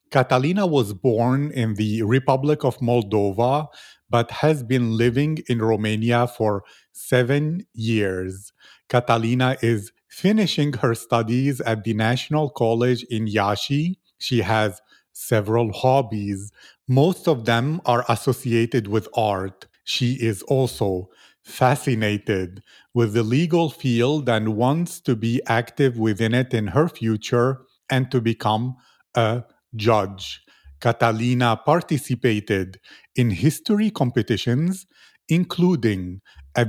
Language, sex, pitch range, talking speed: English, male, 110-135 Hz, 115 wpm